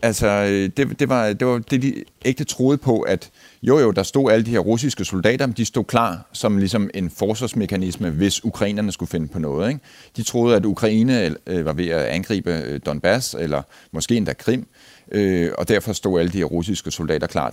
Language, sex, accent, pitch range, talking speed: Danish, male, native, 90-125 Hz, 200 wpm